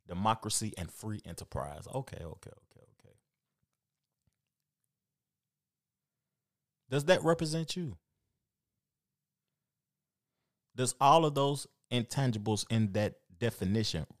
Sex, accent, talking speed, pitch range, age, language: male, American, 85 wpm, 110-155 Hz, 30-49, English